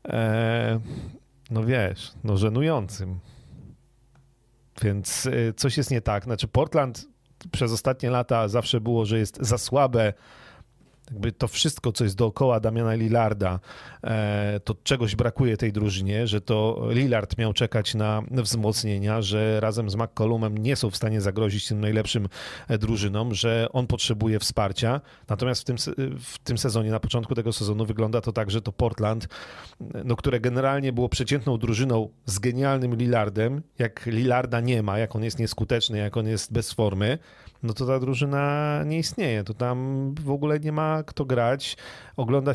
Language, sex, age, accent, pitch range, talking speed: Polish, male, 40-59, native, 110-135 Hz, 155 wpm